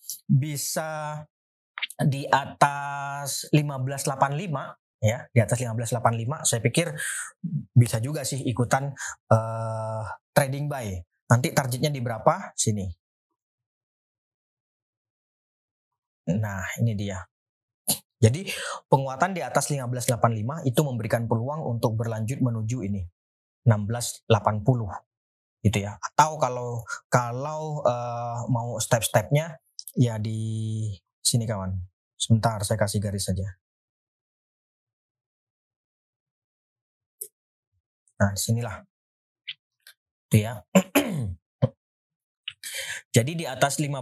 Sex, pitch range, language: male, 110-140 Hz, Indonesian